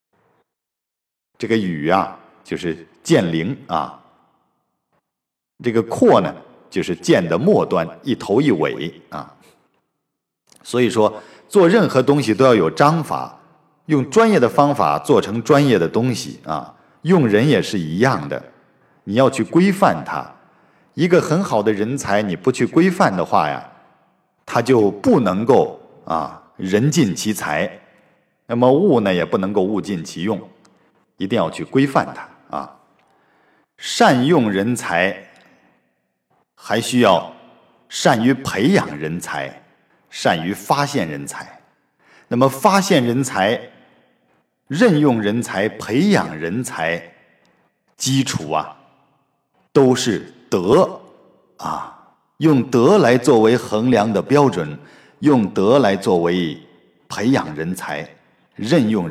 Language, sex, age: Chinese, male, 50-69